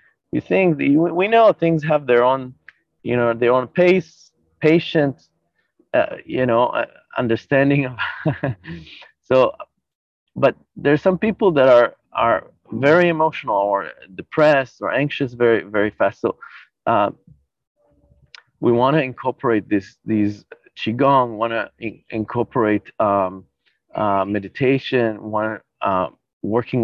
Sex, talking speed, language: male, 130 wpm, English